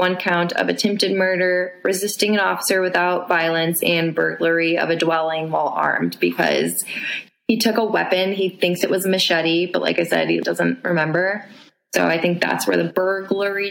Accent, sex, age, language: American, female, 20-39, English